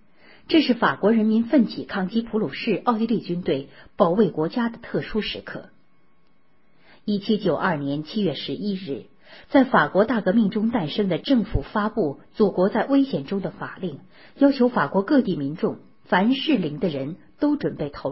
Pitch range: 165-235 Hz